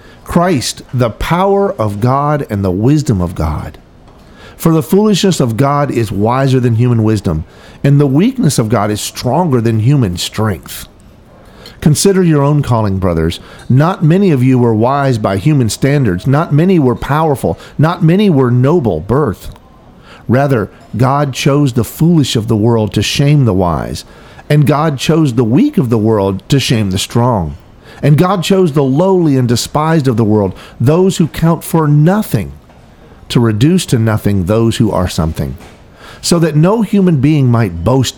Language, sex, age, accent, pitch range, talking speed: English, male, 50-69, American, 105-150 Hz, 170 wpm